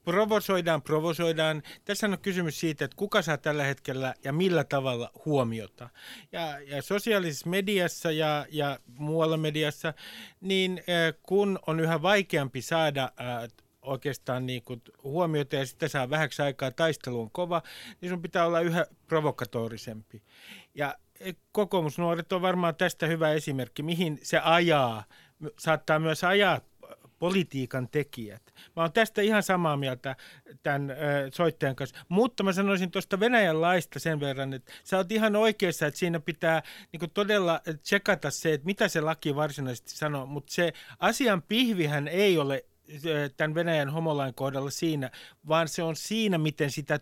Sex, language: male, Finnish